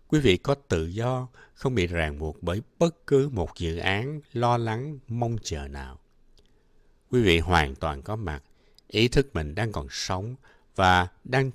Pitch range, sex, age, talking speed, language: 80-125 Hz, male, 60-79, 175 wpm, Vietnamese